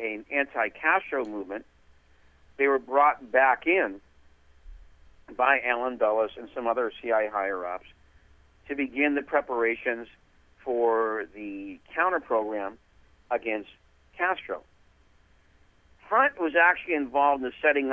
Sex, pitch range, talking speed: male, 90-150 Hz, 105 wpm